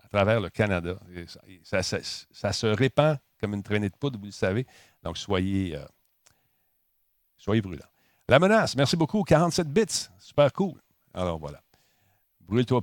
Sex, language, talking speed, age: male, French, 160 wpm, 50-69